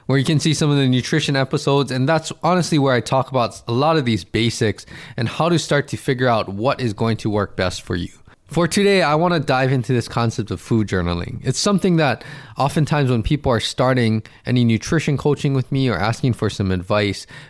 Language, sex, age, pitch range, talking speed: English, male, 20-39, 115-145 Hz, 225 wpm